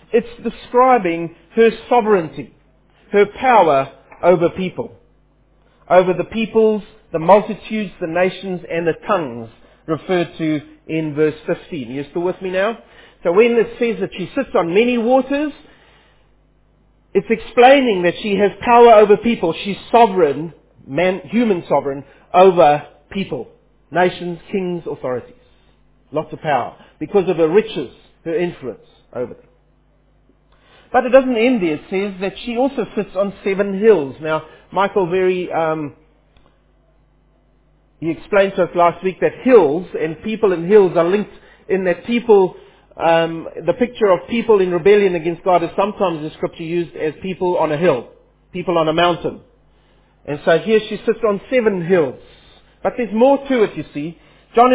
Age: 40-59